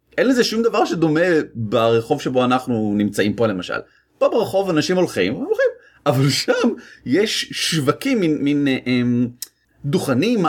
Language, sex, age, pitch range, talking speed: Hebrew, male, 30-49, 120-195 Hz, 130 wpm